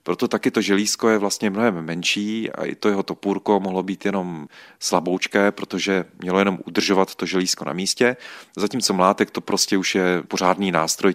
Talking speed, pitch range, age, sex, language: 180 wpm, 90-100 Hz, 40-59, male, Czech